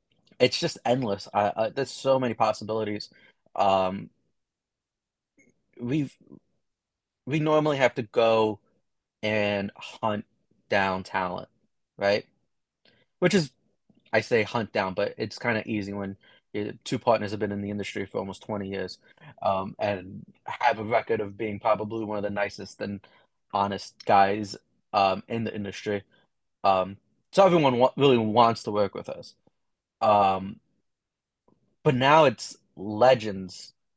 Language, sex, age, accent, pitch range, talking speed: English, male, 20-39, American, 100-125 Hz, 140 wpm